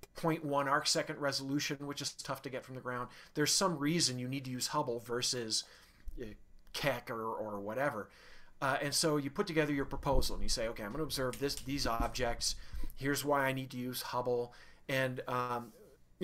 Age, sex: 40-59, male